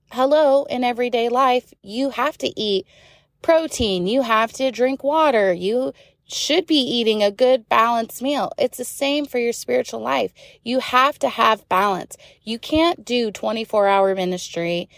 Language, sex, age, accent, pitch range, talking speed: English, female, 20-39, American, 190-250 Hz, 160 wpm